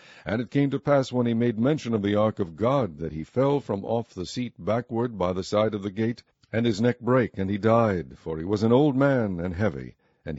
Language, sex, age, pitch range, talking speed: English, male, 60-79, 100-120 Hz, 255 wpm